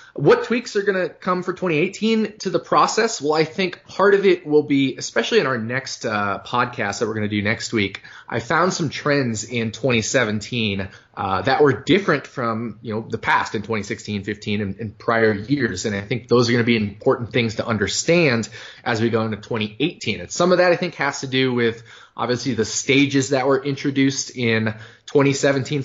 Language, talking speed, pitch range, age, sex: English, 205 wpm, 110-155 Hz, 20-39, male